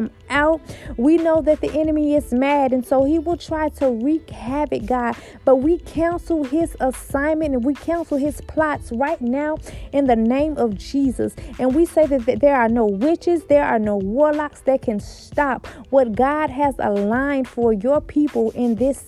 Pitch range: 245-295 Hz